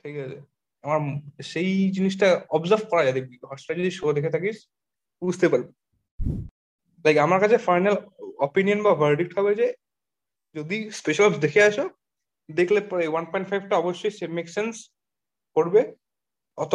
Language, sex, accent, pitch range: Bengali, male, native, 150-200 Hz